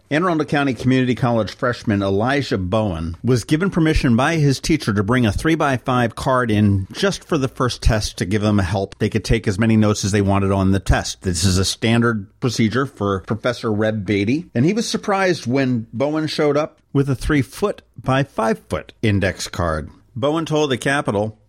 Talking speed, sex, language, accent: 190 wpm, male, English, American